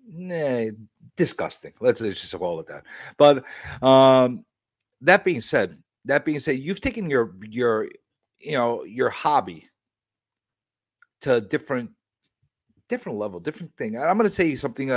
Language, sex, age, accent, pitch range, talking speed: English, male, 50-69, American, 120-175 Hz, 145 wpm